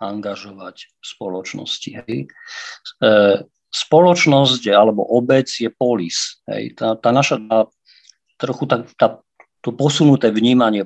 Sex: male